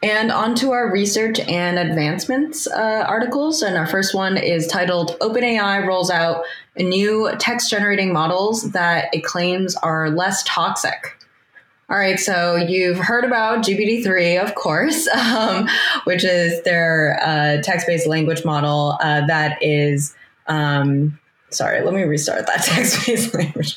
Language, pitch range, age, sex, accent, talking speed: English, 160-205 Hz, 20-39, female, American, 140 wpm